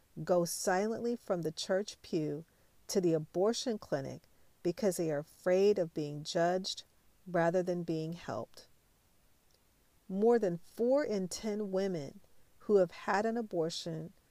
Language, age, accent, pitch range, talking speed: English, 40-59, American, 160-200 Hz, 135 wpm